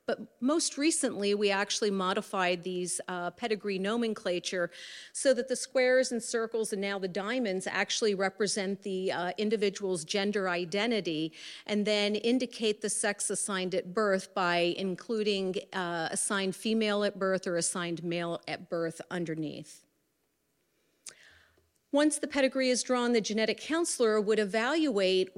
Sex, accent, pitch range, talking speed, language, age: female, American, 185-230 Hz, 135 wpm, English, 40-59